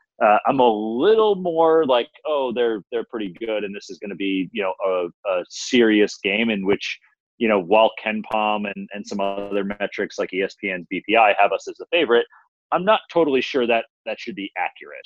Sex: male